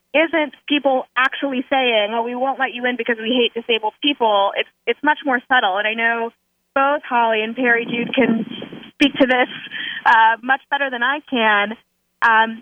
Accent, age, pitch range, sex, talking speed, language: American, 30-49, 225-270 Hz, female, 185 wpm, English